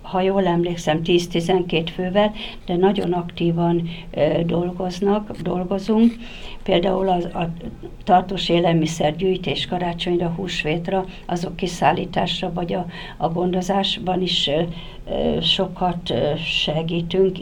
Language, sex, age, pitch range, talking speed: Hungarian, female, 60-79, 175-195 Hz, 100 wpm